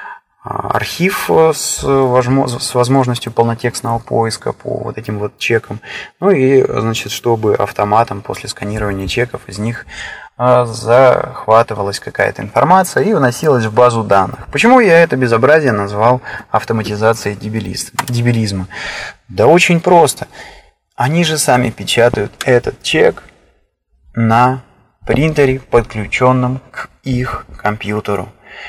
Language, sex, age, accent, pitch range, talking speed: Russian, male, 20-39, native, 100-130 Hz, 105 wpm